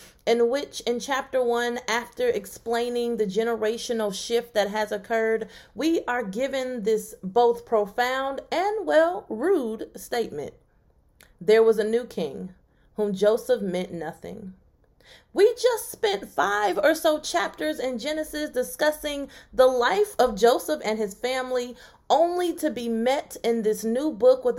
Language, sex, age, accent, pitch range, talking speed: English, female, 30-49, American, 205-265 Hz, 140 wpm